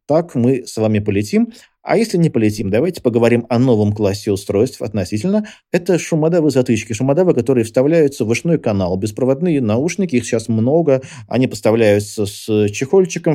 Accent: native